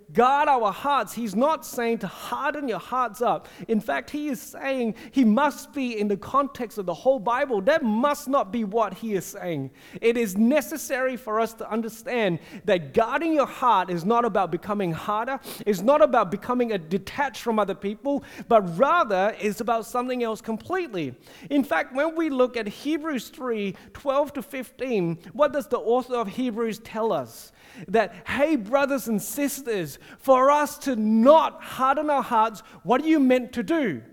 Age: 30-49